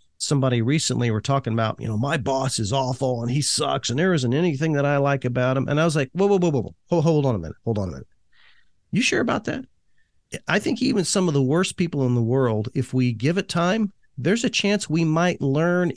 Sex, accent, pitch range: male, American, 120-165 Hz